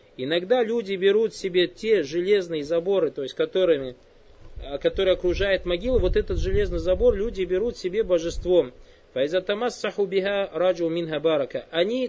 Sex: male